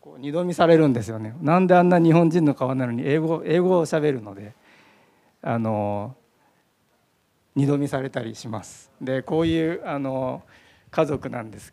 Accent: native